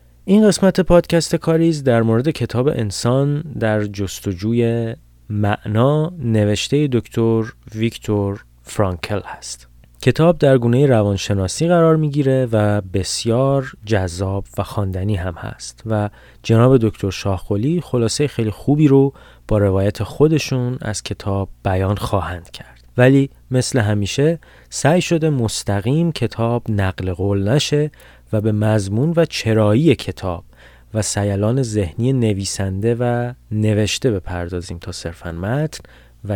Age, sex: 30-49, male